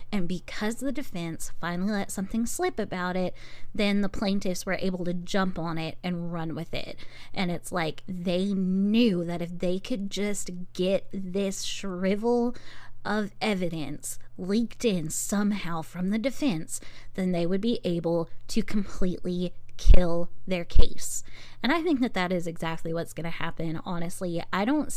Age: 20-39